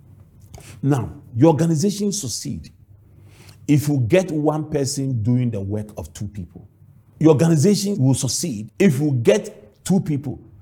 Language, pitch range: English, 105-140 Hz